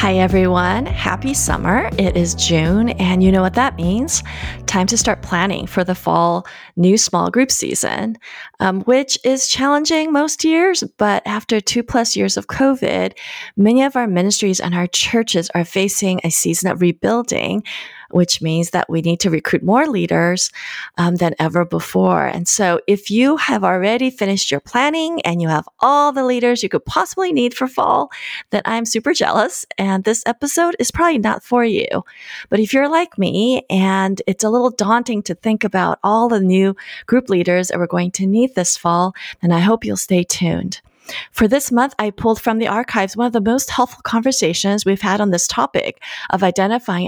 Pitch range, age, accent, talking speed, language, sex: 180-245 Hz, 30-49, American, 190 wpm, English, female